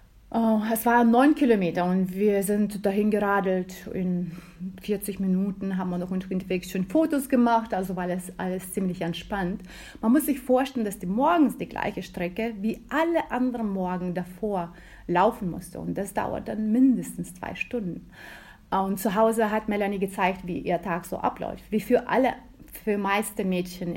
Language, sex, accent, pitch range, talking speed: German, female, German, 180-225 Hz, 170 wpm